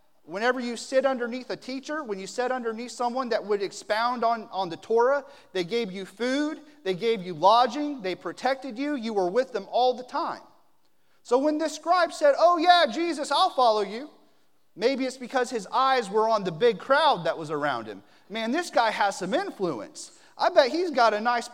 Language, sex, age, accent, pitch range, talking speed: English, male, 30-49, American, 200-285 Hz, 205 wpm